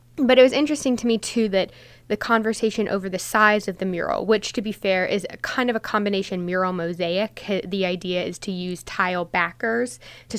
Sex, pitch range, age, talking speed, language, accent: female, 185-220 Hz, 10-29, 210 wpm, English, American